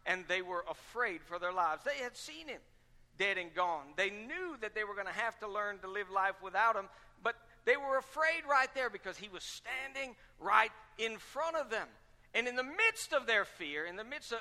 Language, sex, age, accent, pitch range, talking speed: English, male, 60-79, American, 175-245 Hz, 225 wpm